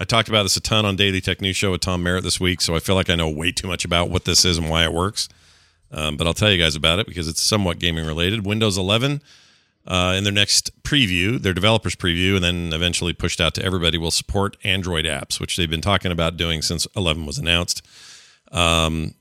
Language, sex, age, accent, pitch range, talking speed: English, male, 40-59, American, 90-105 Hz, 240 wpm